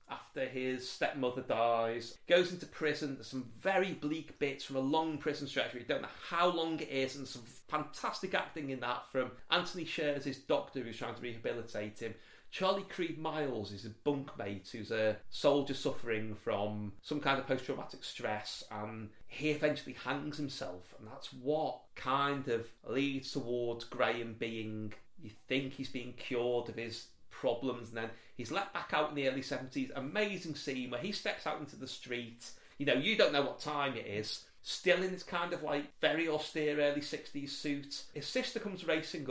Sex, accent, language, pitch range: male, British, English, 115-150 Hz